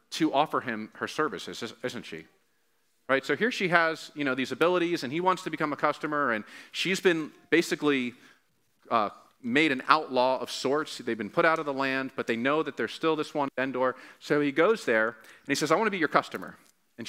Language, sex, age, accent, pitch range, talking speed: English, male, 40-59, American, 125-160 Hz, 220 wpm